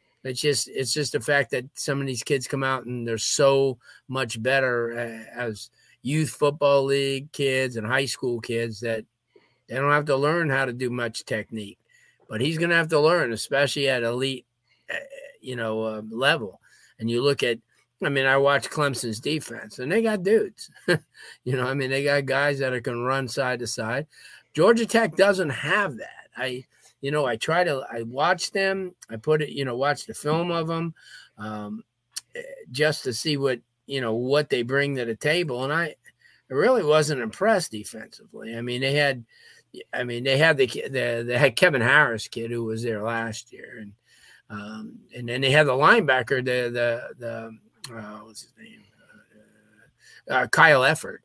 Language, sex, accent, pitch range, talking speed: English, male, American, 115-145 Hz, 190 wpm